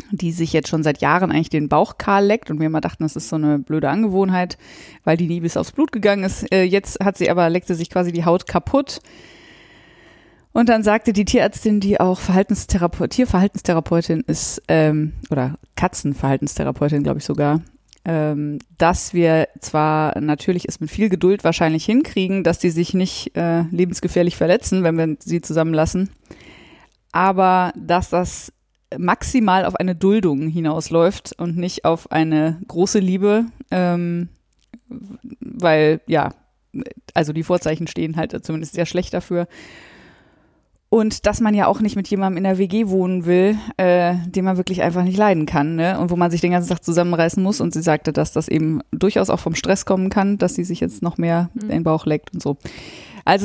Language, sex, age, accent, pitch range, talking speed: German, female, 20-39, German, 160-195 Hz, 175 wpm